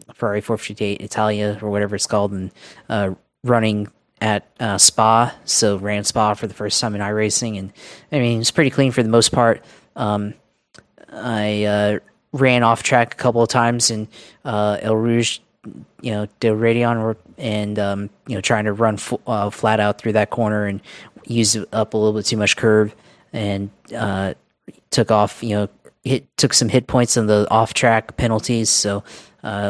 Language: English